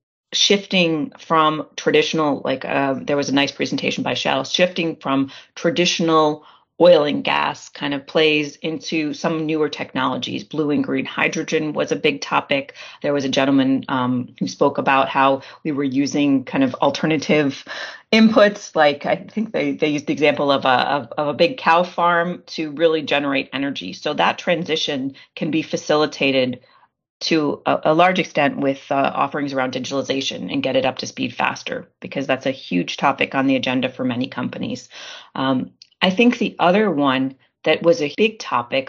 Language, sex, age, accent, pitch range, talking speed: English, female, 30-49, American, 135-170 Hz, 175 wpm